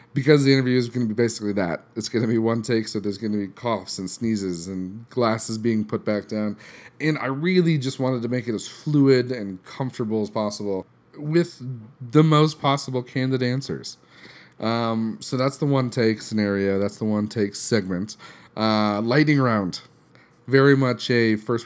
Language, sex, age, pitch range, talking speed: English, male, 30-49, 105-130 Hz, 180 wpm